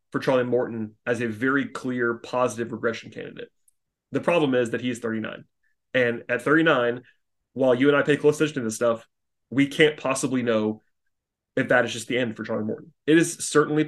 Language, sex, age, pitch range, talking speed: English, male, 30-49, 120-155 Hz, 200 wpm